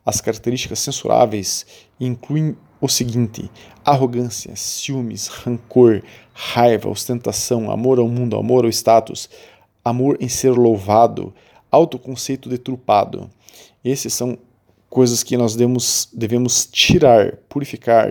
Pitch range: 105-125 Hz